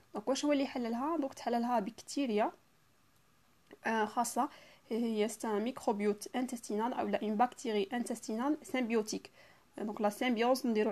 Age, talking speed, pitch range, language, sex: 20-39, 110 wpm, 220-260 Hz, Arabic, female